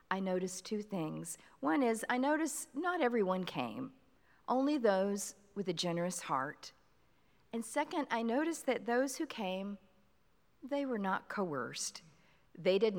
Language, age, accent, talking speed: English, 50-69, American, 145 wpm